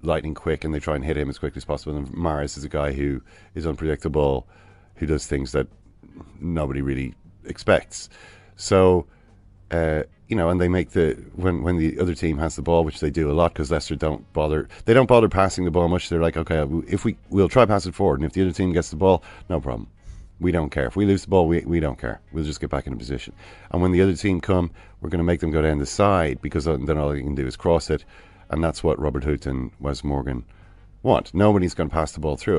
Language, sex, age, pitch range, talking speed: English, male, 40-59, 75-95 Hz, 250 wpm